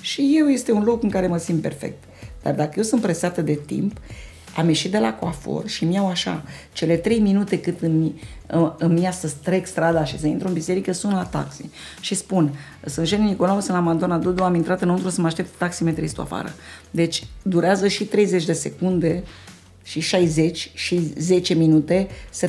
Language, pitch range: Romanian, 160-200 Hz